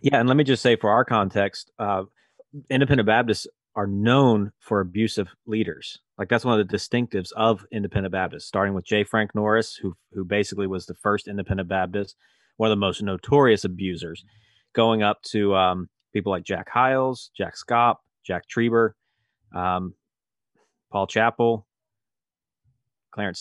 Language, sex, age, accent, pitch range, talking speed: English, male, 30-49, American, 95-115 Hz, 155 wpm